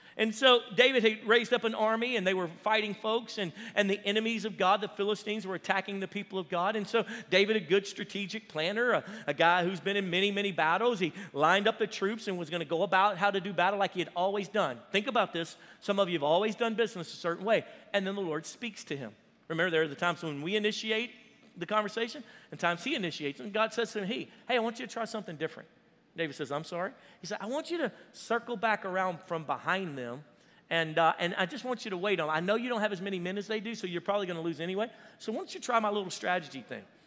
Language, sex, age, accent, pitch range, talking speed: English, male, 40-59, American, 185-225 Hz, 265 wpm